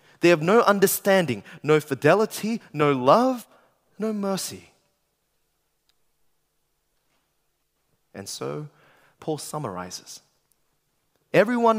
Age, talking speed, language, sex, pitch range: 20-39, 75 wpm, English, male, 145-210 Hz